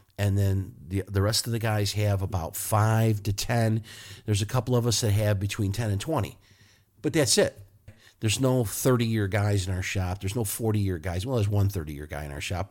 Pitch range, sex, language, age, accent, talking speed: 95-115 Hz, male, English, 50-69, American, 215 wpm